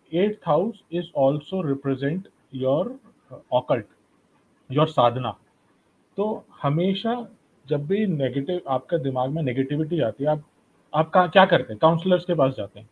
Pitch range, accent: 135-180 Hz, native